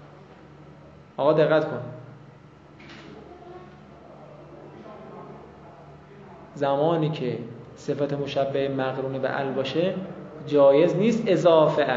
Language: Persian